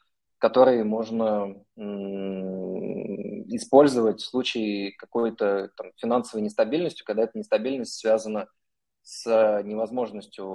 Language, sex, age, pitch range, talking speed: Russian, male, 20-39, 95-115 Hz, 80 wpm